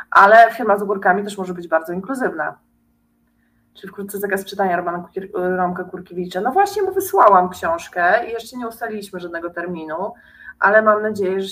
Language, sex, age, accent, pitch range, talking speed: Polish, female, 30-49, native, 170-215 Hz, 155 wpm